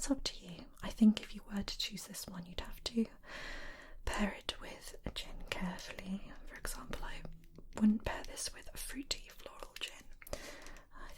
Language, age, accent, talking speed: English, 20-39, British, 175 wpm